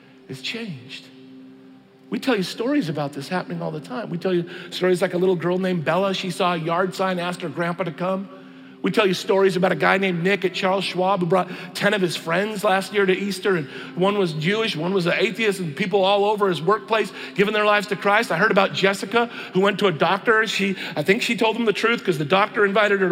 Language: English